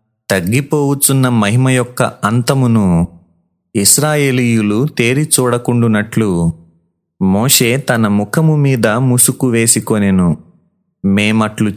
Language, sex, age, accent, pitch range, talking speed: Telugu, male, 30-49, native, 100-130 Hz, 65 wpm